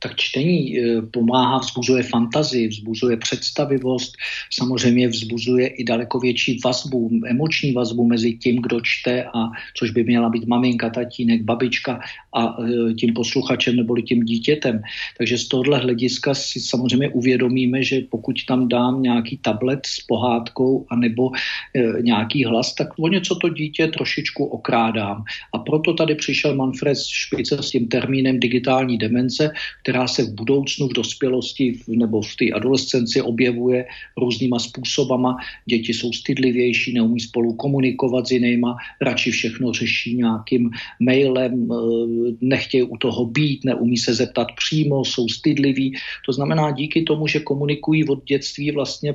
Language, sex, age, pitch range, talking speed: Czech, male, 50-69, 120-135 Hz, 140 wpm